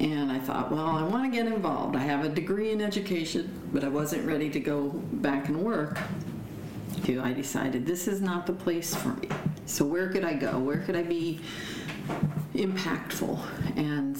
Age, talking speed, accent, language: 50-69, 190 wpm, American, English